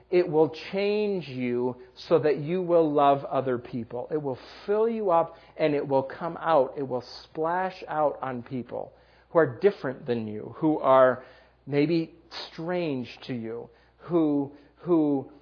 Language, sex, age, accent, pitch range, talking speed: English, male, 40-59, American, 125-160 Hz, 155 wpm